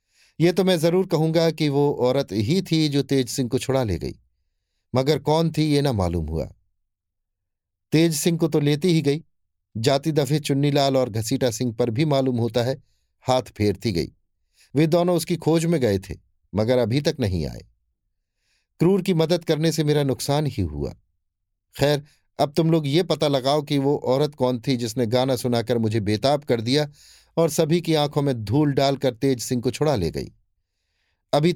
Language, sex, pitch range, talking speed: Hindi, male, 95-150 Hz, 190 wpm